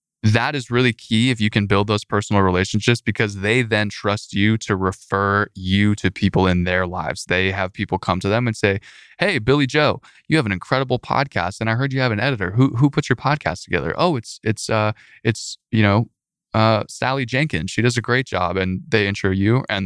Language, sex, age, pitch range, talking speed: English, male, 20-39, 95-115 Hz, 220 wpm